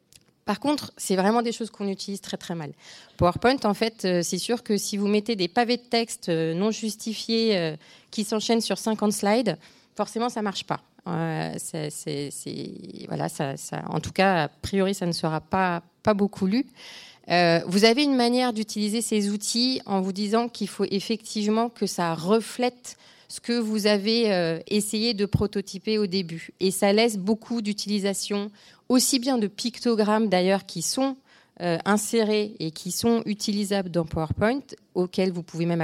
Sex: female